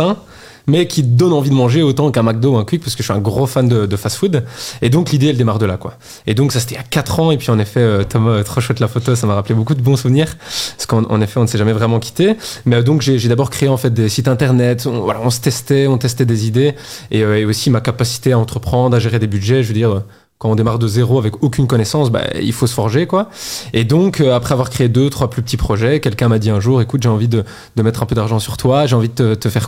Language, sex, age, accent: French, male, 20-39, French